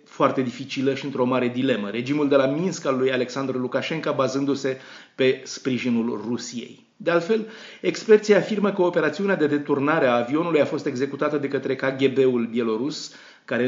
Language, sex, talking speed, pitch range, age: Romanian, male, 160 wpm, 130-175 Hz, 30-49